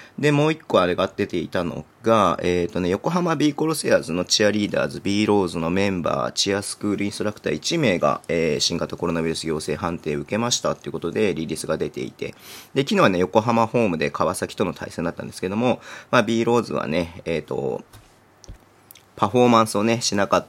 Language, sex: Japanese, male